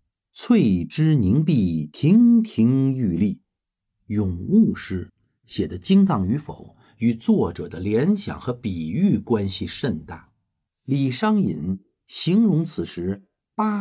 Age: 50-69